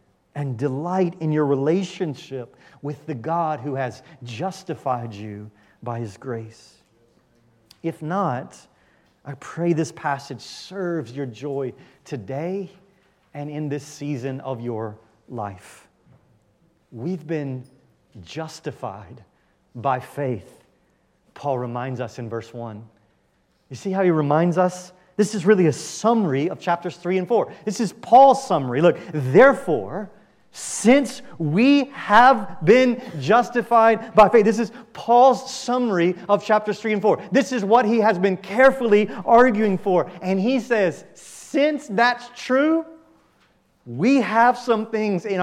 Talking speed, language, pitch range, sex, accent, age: 135 wpm, English, 145-225 Hz, male, American, 30-49